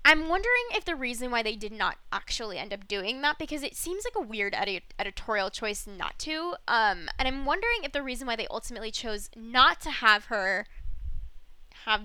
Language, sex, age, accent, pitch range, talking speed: English, female, 10-29, American, 210-270 Hz, 200 wpm